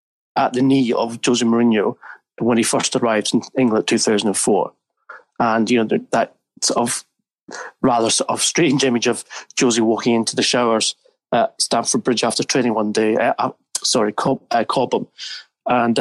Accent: British